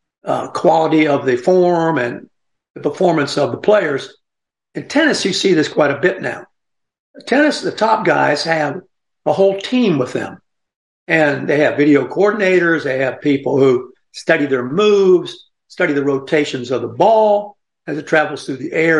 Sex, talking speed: male, 170 wpm